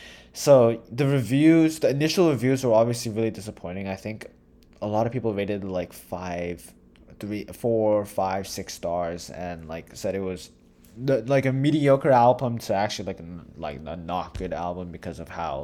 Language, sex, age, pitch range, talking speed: English, male, 20-39, 85-115 Hz, 175 wpm